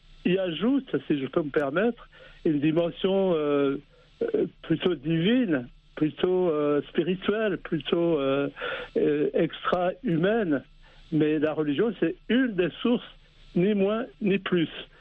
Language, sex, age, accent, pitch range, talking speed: French, male, 60-79, French, 150-190 Hz, 115 wpm